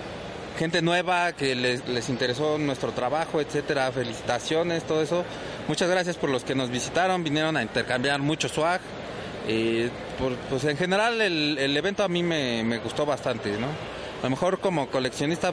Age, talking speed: 30-49, 170 wpm